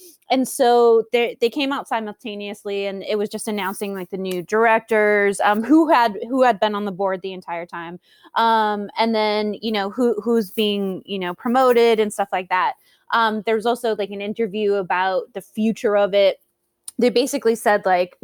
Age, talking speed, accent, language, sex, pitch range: 20-39, 195 wpm, American, English, female, 185-225 Hz